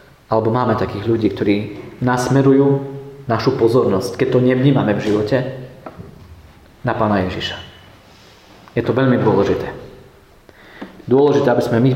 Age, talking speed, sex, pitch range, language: 40-59, 120 wpm, male, 115-135 Hz, Slovak